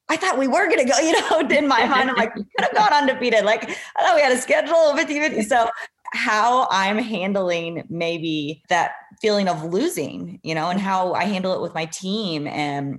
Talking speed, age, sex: 220 wpm, 20-39, female